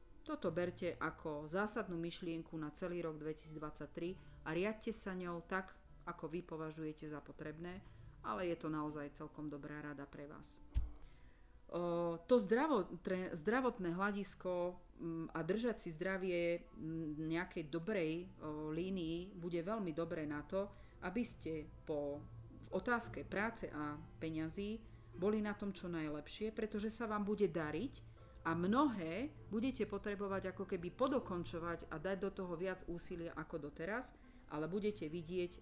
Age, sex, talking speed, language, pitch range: 40-59, female, 130 wpm, Slovak, 155-190 Hz